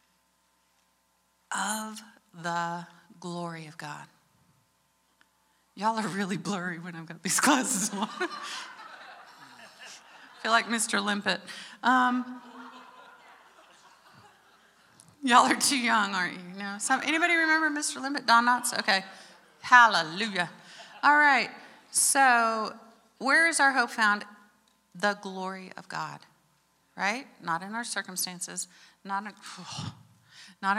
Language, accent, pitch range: English, American, 175-255 Hz